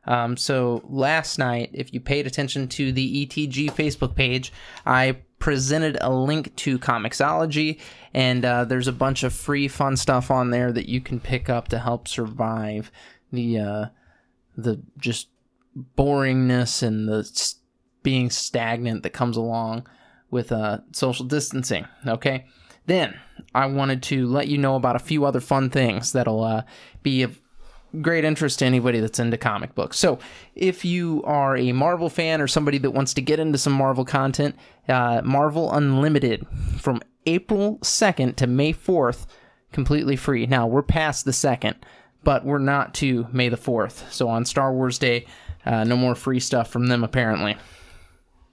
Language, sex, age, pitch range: English, male, 20-39, 120-140 Hz